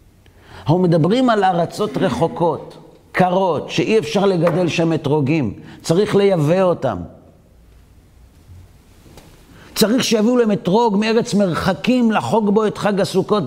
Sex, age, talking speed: male, 50-69, 105 wpm